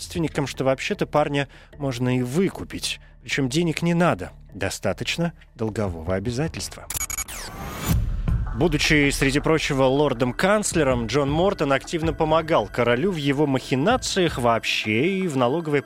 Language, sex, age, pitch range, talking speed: Russian, male, 30-49, 120-160 Hz, 110 wpm